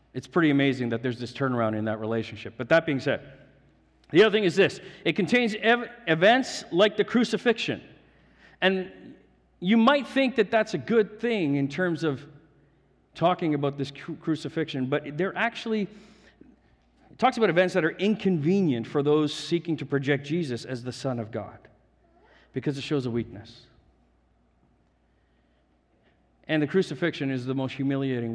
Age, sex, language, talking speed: 50-69, male, English, 160 wpm